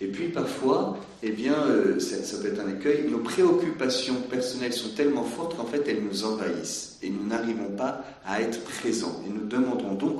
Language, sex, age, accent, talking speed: French, male, 50-69, French, 200 wpm